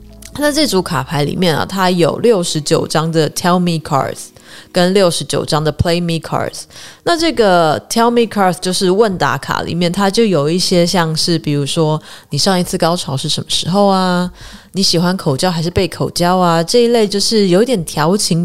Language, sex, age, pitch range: Chinese, female, 20-39, 155-195 Hz